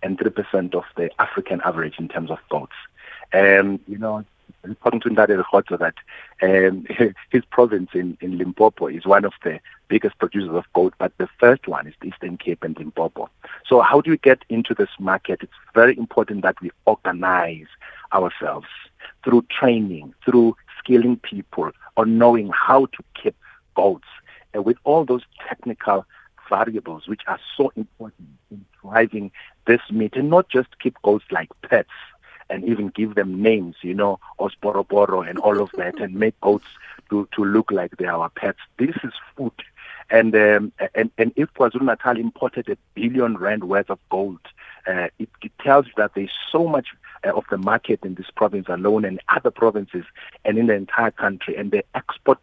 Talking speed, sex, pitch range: 180 wpm, male, 95-115 Hz